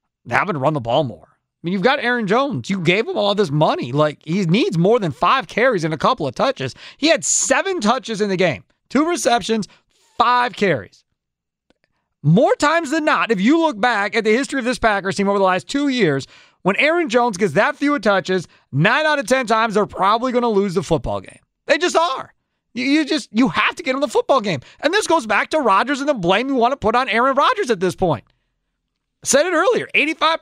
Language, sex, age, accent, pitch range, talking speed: English, male, 30-49, American, 190-275 Hz, 235 wpm